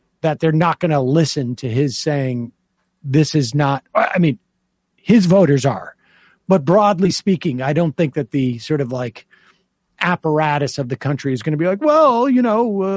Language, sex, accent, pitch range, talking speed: English, male, American, 145-190 Hz, 185 wpm